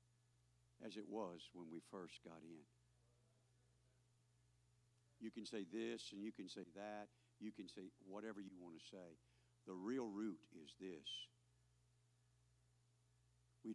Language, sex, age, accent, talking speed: English, male, 60-79, American, 135 wpm